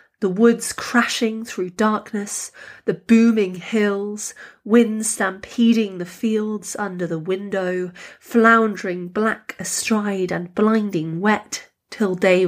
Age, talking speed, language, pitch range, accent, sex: 30-49, 110 wpm, English, 180-215 Hz, British, female